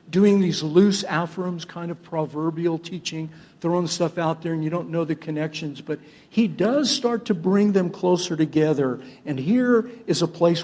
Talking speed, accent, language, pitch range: 180 wpm, American, English, 150-195 Hz